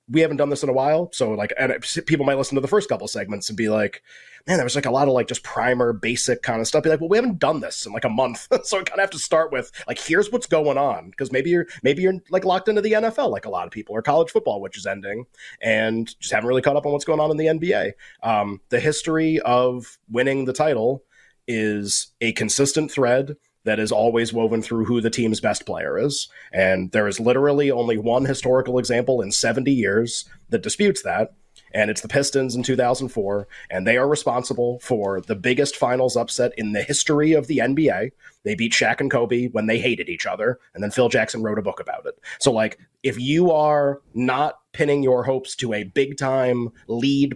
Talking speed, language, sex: 230 wpm, English, male